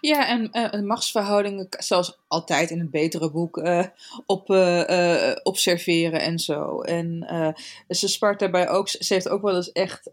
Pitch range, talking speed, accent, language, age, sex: 170-210 Hz, 170 wpm, Dutch, Dutch, 20-39, female